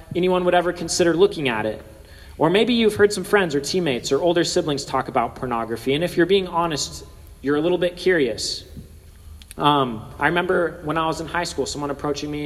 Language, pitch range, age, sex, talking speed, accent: English, 135-180 Hz, 30-49, male, 205 wpm, American